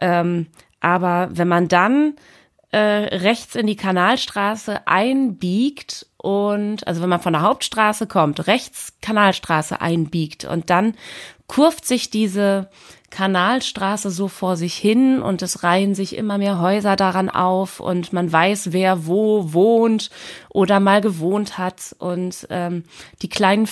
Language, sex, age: German, female, 30-49